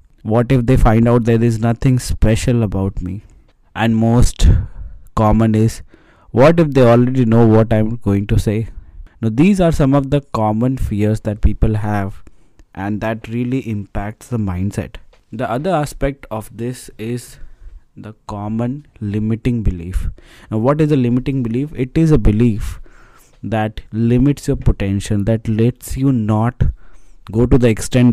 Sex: male